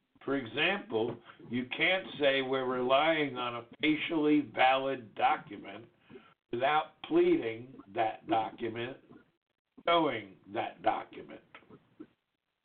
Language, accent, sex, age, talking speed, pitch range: English, American, male, 60-79, 90 wpm, 115-155 Hz